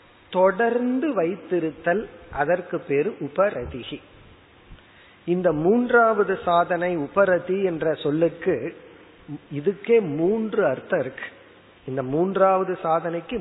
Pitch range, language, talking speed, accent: 155-220 Hz, Tamil, 70 wpm, native